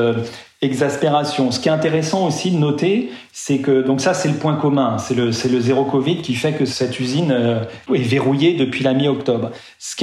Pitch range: 125-160 Hz